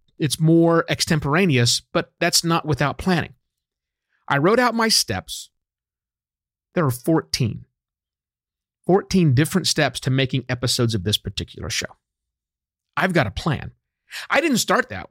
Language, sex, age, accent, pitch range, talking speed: English, male, 40-59, American, 115-175 Hz, 135 wpm